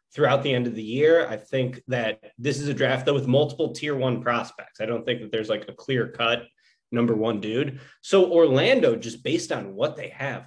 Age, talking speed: 20-39, 225 wpm